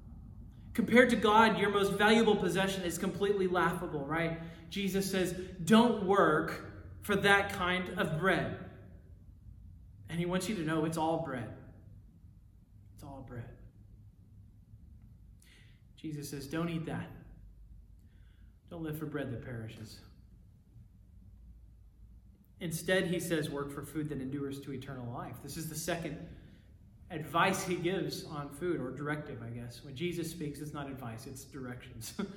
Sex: male